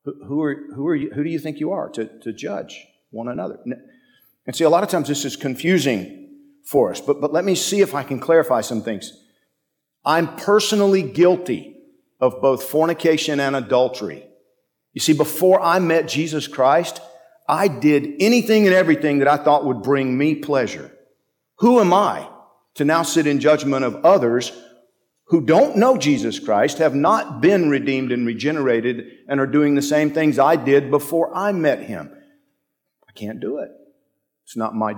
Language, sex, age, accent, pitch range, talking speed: English, male, 50-69, American, 135-195 Hz, 180 wpm